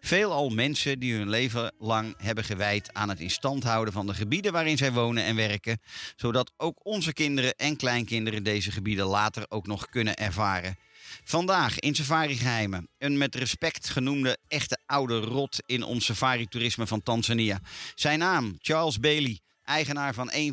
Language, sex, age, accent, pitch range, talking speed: Dutch, male, 50-69, Dutch, 110-135 Hz, 165 wpm